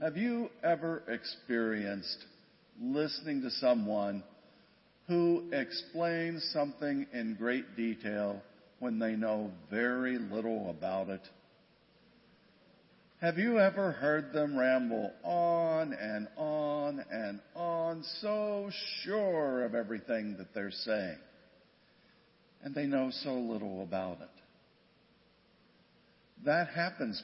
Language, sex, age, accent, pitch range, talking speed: English, male, 50-69, American, 110-170 Hz, 105 wpm